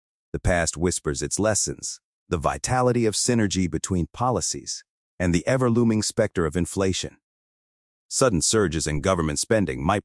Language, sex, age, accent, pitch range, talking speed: English, male, 30-49, American, 80-110 Hz, 145 wpm